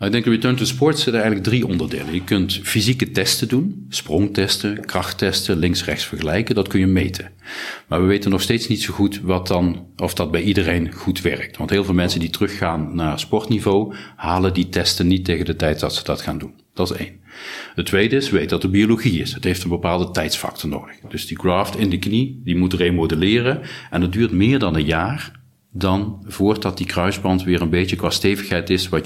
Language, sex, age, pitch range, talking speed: Dutch, male, 40-59, 85-105 Hz, 215 wpm